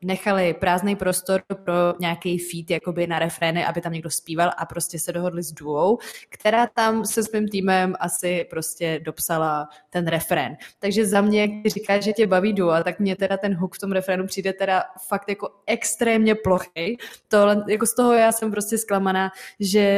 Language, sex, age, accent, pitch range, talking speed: Czech, female, 20-39, native, 185-215 Hz, 185 wpm